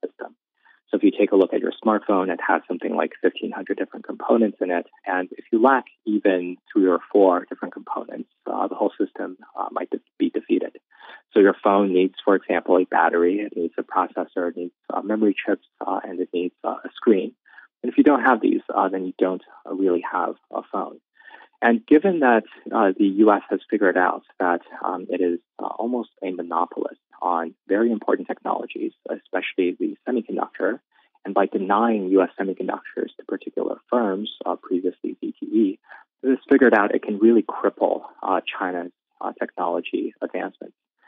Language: English